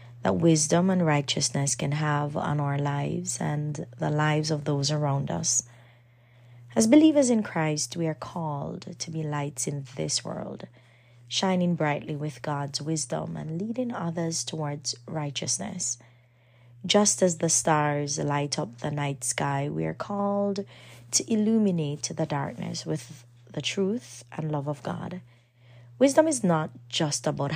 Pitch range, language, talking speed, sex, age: 135-175 Hz, English, 145 wpm, female, 30-49